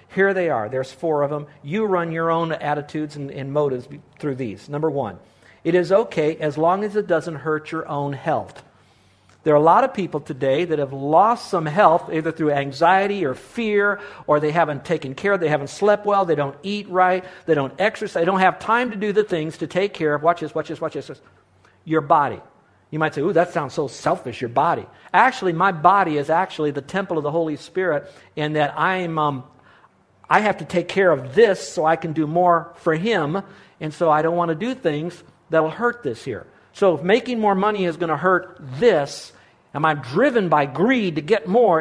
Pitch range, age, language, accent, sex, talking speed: 145-190 Hz, 50-69, English, American, male, 225 wpm